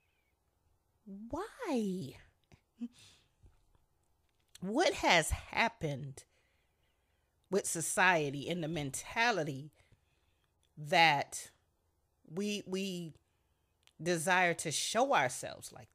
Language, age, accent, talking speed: English, 30-49, American, 65 wpm